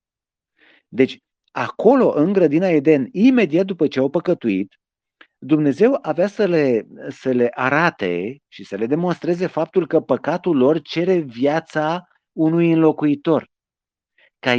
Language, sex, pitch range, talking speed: Romanian, male, 125-170 Hz, 125 wpm